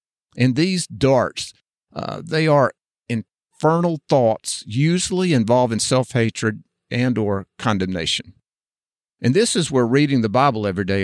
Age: 50-69